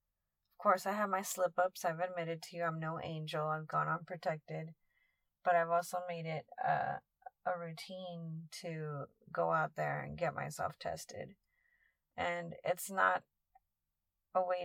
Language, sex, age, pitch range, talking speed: English, female, 30-49, 155-185 Hz, 150 wpm